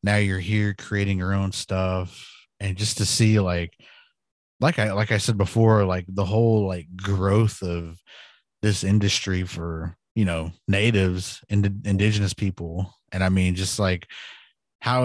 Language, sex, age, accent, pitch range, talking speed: English, male, 30-49, American, 95-105 Hz, 155 wpm